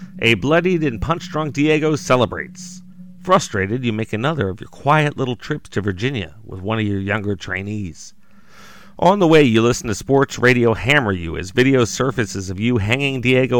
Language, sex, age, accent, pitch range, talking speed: English, male, 40-59, American, 105-165 Hz, 175 wpm